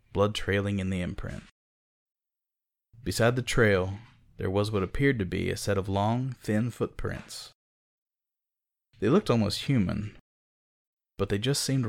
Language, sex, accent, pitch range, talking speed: English, male, American, 95-115 Hz, 140 wpm